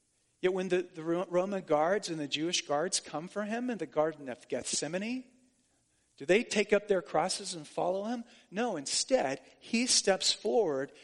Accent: American